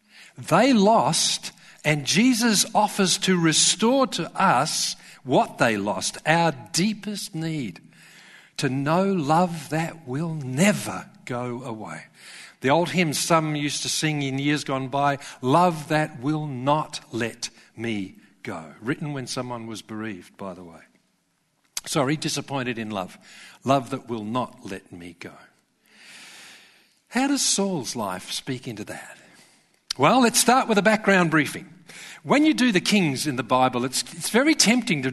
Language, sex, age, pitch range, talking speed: English, male, 50-69, 125-180 Hz, 150 wpm